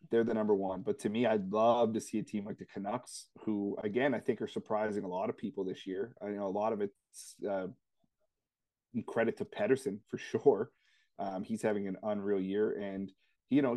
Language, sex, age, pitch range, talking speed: English, male, 30-49, 100-115 Hz, 215 wpm